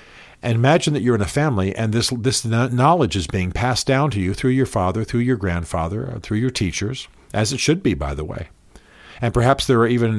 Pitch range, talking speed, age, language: 90-125 Hz, 230 wpm, 50-69, English